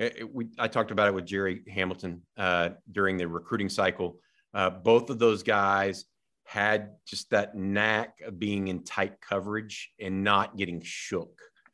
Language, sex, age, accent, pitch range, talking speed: English, male, 50-69, American, 100-115 Hz, 155 wpm